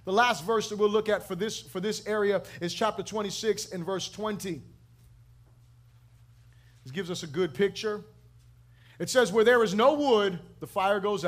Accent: American